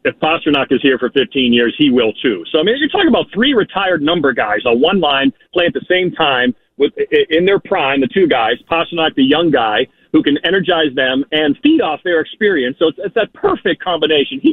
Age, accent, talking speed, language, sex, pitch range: 40-59, American, 225 wpm, English, male, 135-200 Hz